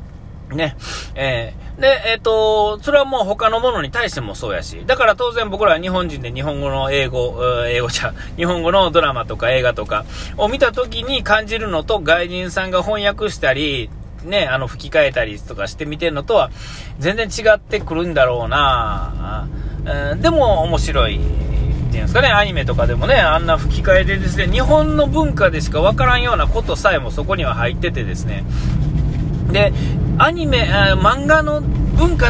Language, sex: Japanese, male